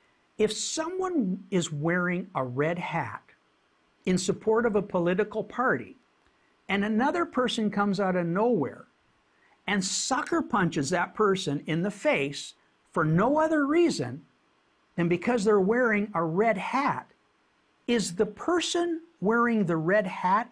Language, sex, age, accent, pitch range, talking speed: English, male, 60-79, American, 180-255 Hz, 135 wpm